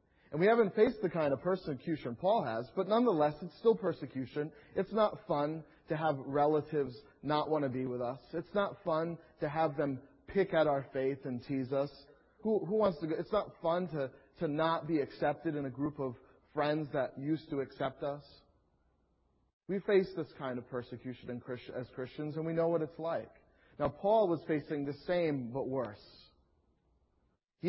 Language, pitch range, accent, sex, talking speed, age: English, 120-160 Hz, American, male, 190 wpm, 30-49